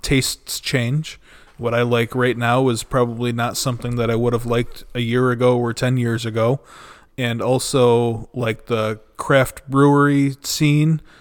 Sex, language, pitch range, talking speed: male, English, 115-130 Hz, 160 wpm